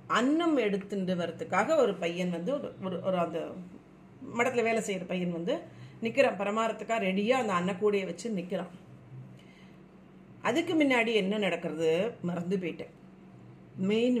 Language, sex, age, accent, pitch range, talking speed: Tamil, female, 40-59, native, 190-260 Hz, 105 wpm